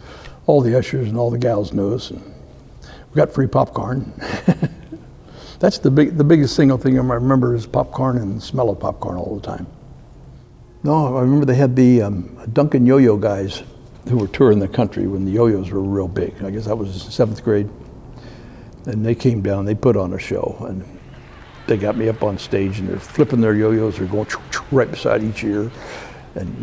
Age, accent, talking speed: 60-79, American, 200 wpm